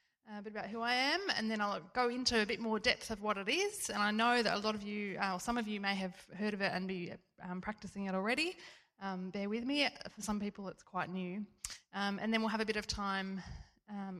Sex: female